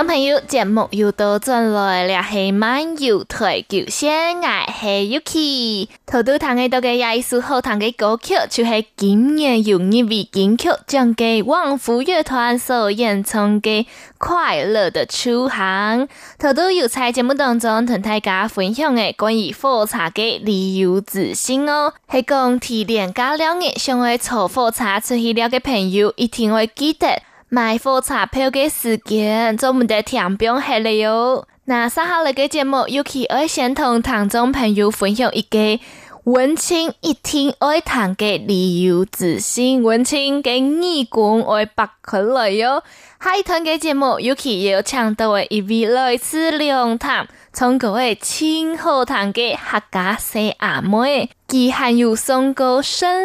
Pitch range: 215-270 Hz